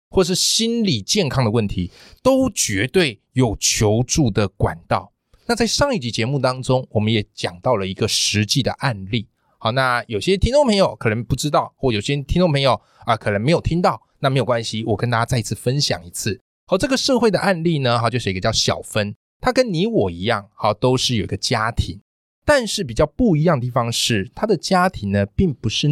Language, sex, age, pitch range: Chinese, male, 20-39, 110-180 Hz